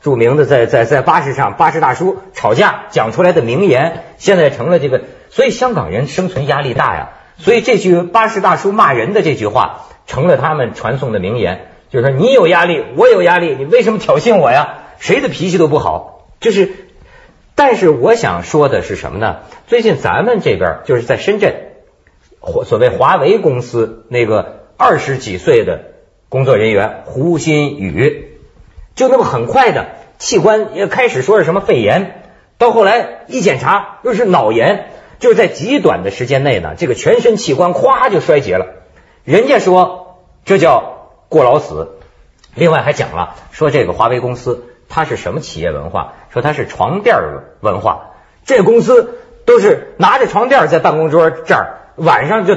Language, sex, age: Chinese, male, 50-69